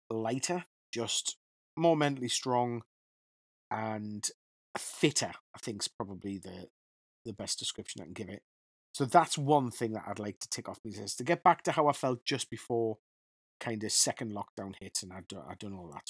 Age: 30-49